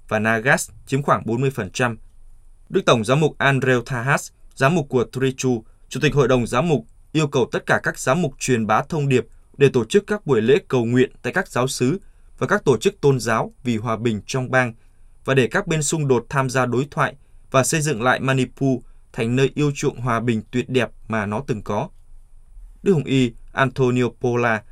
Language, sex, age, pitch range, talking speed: Vietnamese, male, 20-39, 110-140 Hz, 210 wpm